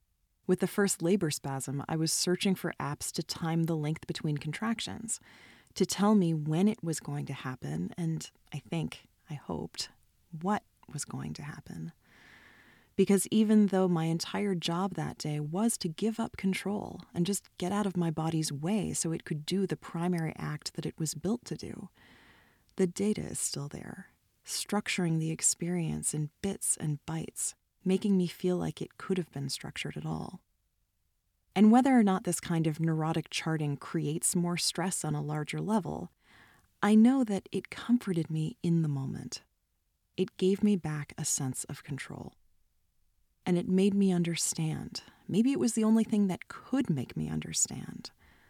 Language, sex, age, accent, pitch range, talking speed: English, female, 30-49, American, 145-190 Hz, 175 wpm